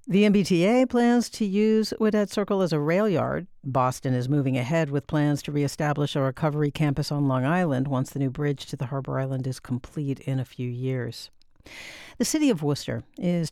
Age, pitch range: 60-79, 130-195 Hz